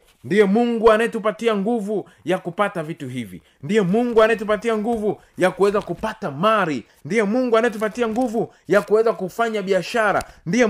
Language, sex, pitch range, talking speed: Swahili, male, 170-225 Hz, 140 wpm